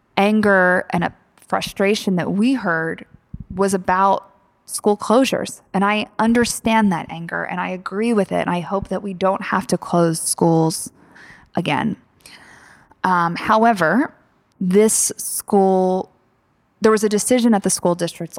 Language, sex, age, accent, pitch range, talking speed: English, female, 20-39, American, 175-220 Hz, 145 wpm